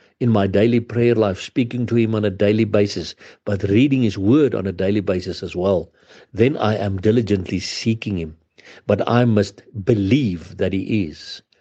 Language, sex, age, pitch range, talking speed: English, male, 60-79, 100-120 Hz, 180 wpm